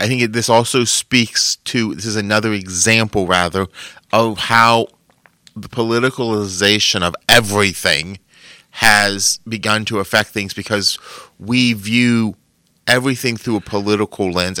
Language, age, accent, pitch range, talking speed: English, 30-49, American, 100-130 Hz, 125 wpm